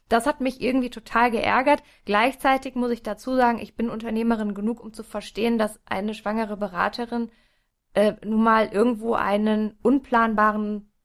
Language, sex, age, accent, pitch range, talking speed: German, female, 20-39, German, 210-255 Hz, 150 wpm